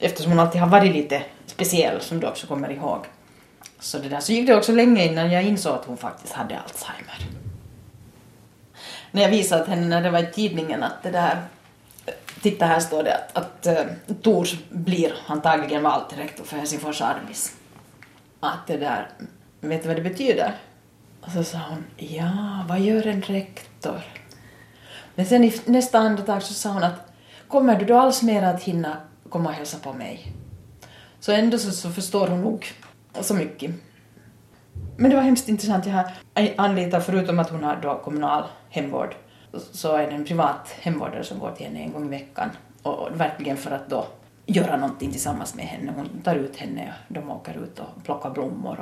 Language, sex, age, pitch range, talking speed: Swedish, female, 30-49, 150-205 Hz, 190 wpm